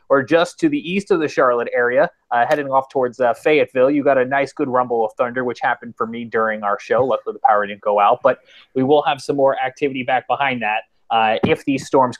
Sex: male